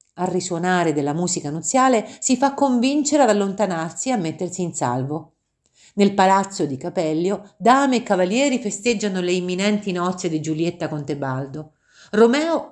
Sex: female